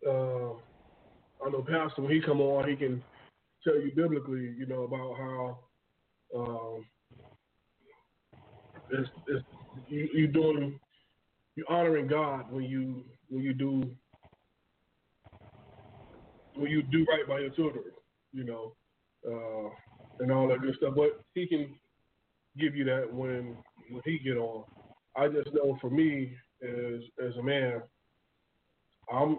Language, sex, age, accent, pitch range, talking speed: English, male, 20-39, American, 125-150 Hz, 135 wpm